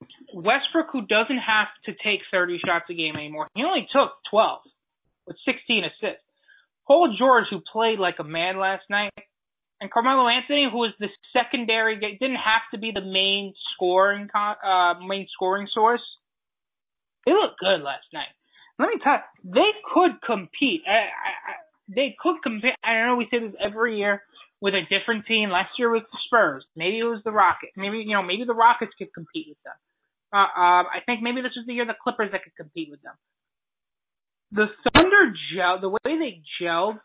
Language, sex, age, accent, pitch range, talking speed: English, male, 20-39, American, 180-235 Hz, 190 wpm